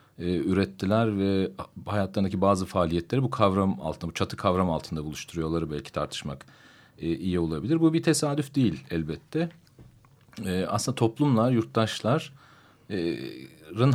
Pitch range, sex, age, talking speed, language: 95-130 Hz, male, 40-59, 110 wpm, Turkish